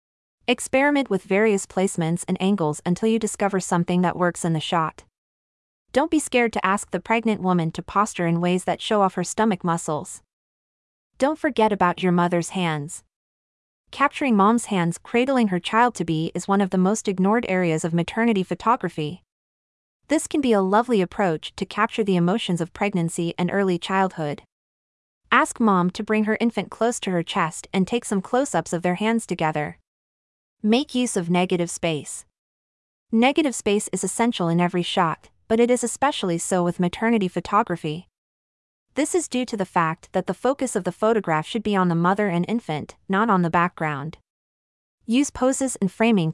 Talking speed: 180 wpm